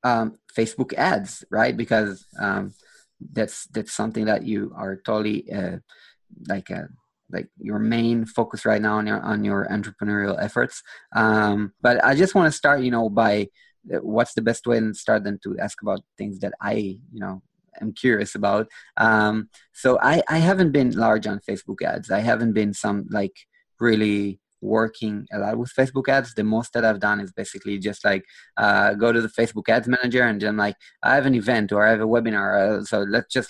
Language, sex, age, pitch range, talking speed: English, male, 20-39, 105-120 Hz, 205 wpm